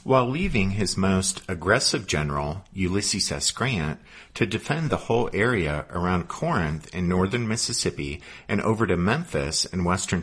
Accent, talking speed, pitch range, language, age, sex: American, 145 wpm, 85-125 Hz, English, 50-69, male